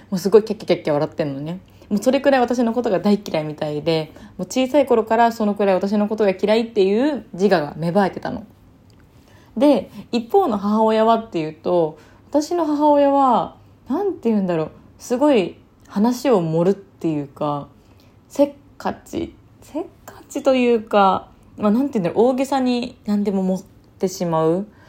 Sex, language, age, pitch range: female, Japanese, 20-39, 165-255 Hz